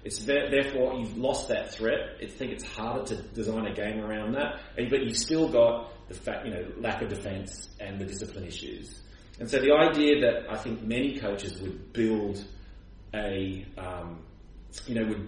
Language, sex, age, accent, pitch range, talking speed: English, male, 30-49, Australian, 100-125 Hz, 190 wpm